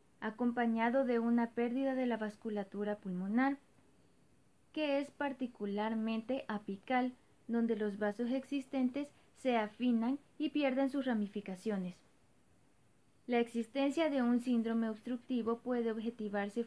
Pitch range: 220-265 Hz